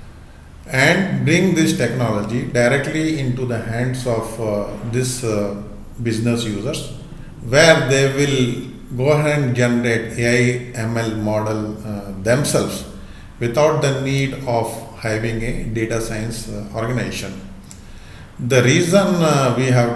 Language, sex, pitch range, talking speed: English, male, 105-130 Hz, 125 wpm